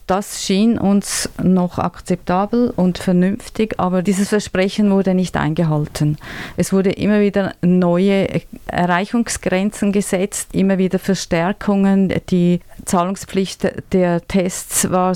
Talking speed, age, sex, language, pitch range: 110 wpm, 30-49, female, English, 175-200 Hz